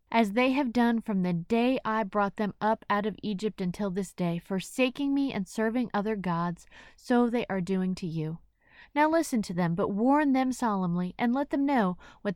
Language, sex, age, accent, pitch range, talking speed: English, female, 20-39, American, 190-260 Hz, 205 wpm